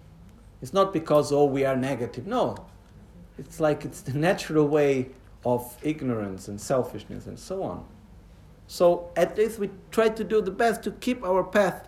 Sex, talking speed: male, 170 wpm